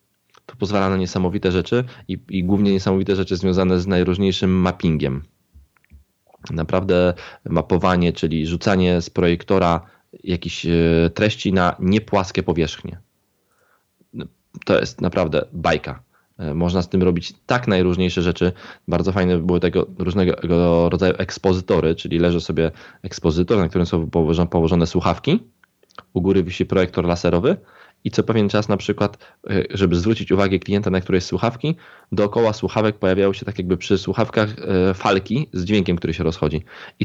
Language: Polish